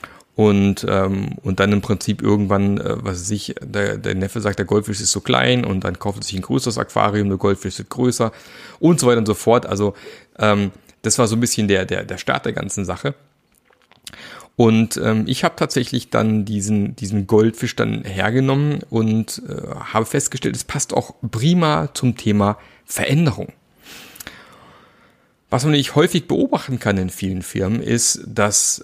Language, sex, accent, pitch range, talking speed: German, male, German, 100-120 Hz, 175 wpm